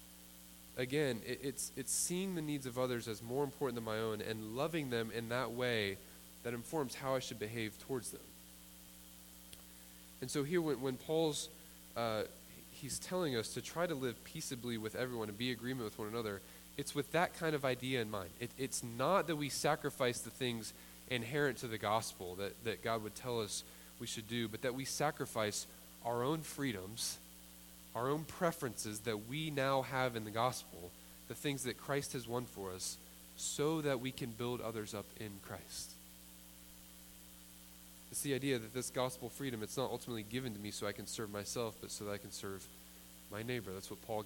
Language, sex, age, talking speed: English, male, 10-29, 195 wpm